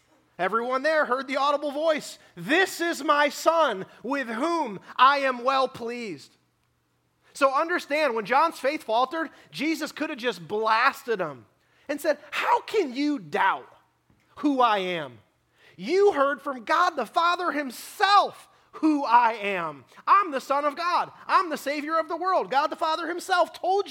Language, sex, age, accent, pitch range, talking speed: English, male, 30-49, American, 210-300 Hz, 160 wpm